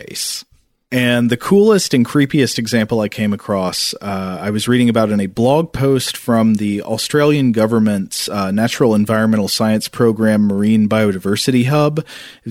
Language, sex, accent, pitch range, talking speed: English, male, American, 105-130 Hz, 150 wpm